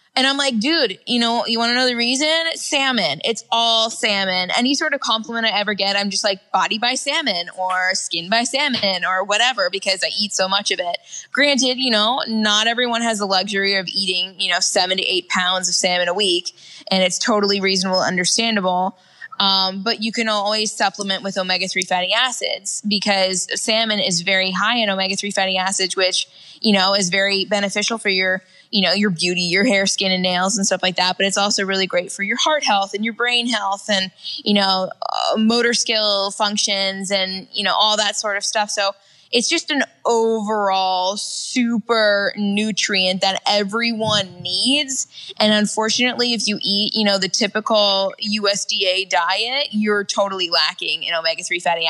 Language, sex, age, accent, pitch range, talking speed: English, female, 20-39, American, 190-225 Hz, 190 wpm